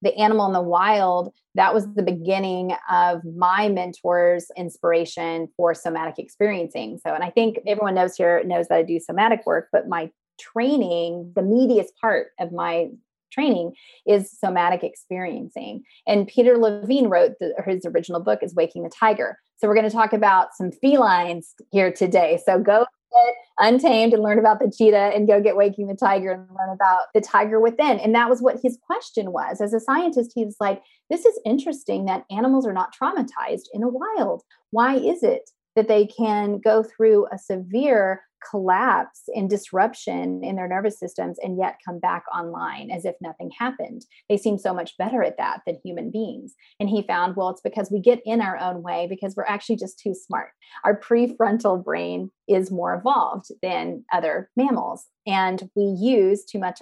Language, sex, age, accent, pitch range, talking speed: English, female, 30-49, American, 185-230 Hz, 185 wpm